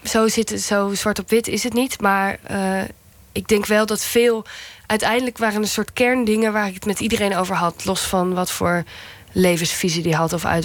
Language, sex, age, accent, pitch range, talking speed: Dutch, female, 20-39, Dutch, 155-190 Hz, 210 wpm